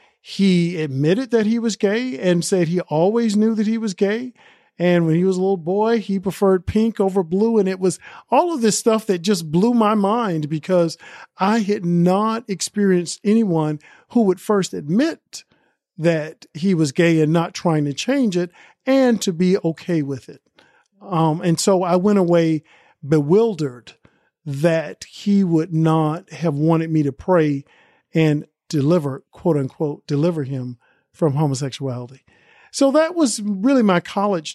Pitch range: 155-200 Hz